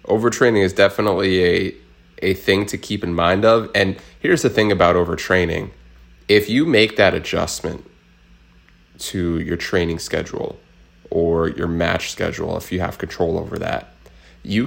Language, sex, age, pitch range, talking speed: English, male, 30-49, 85-105 Hz, 150 wpm